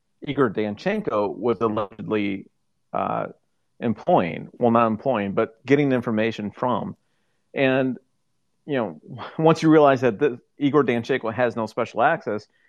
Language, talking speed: English, 130 wpm